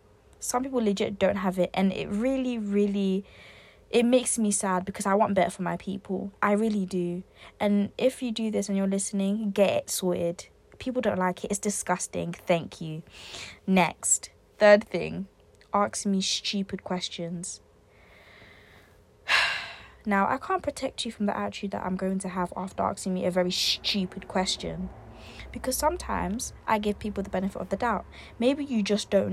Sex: female